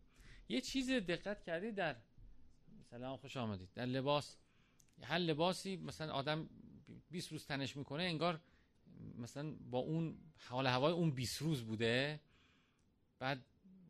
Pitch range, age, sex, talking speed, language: 120-170 Hz, 40-59, male, 130 wpm, Persian